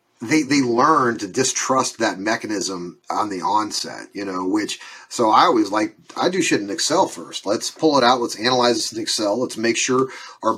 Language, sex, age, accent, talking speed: English, male, 30-49, American, 205 wpm